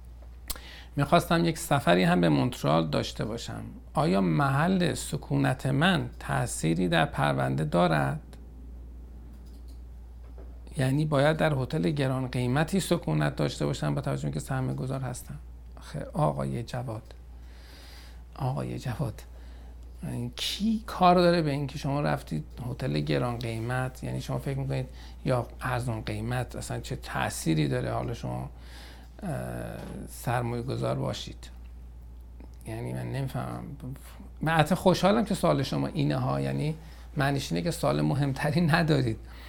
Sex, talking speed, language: male, 115 wpm, Persian